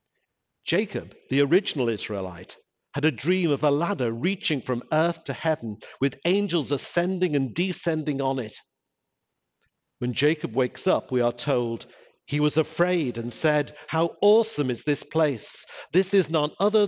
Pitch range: 125-170 Hz